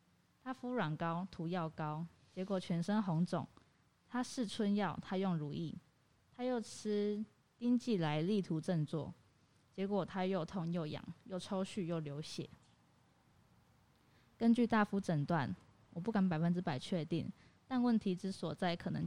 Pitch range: 165-200 Hz